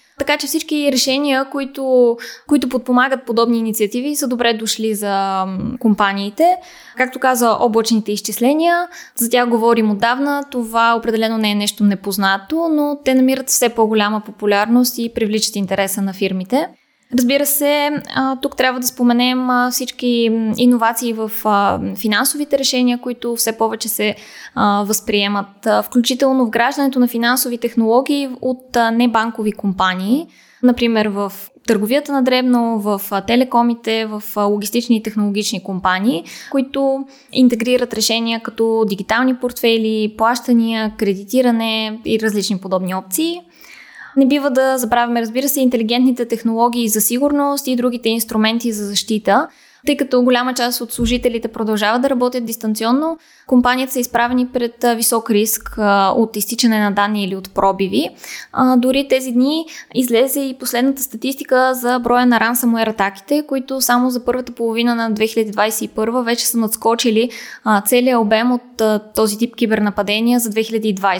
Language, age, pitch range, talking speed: Bulgarian, 20-39, 220-255 Hz, 130 wpm